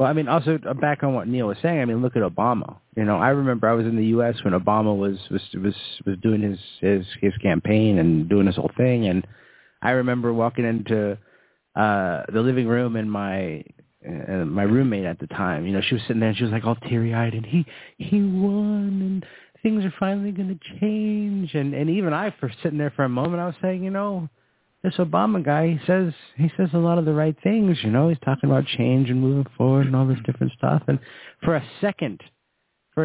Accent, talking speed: American, 230 wpm